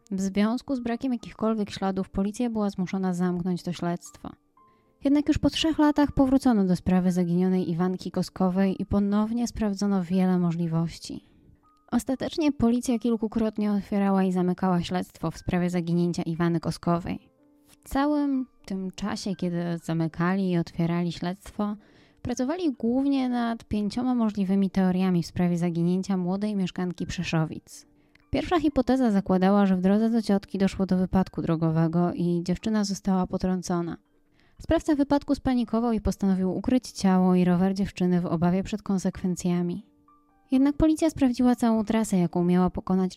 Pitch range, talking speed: 180-230 Hz, 140 wpm